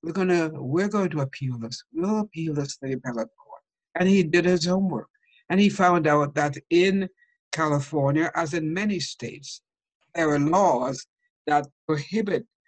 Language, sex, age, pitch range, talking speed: English, male, 60-79, 135-180 Hz, 160 wpm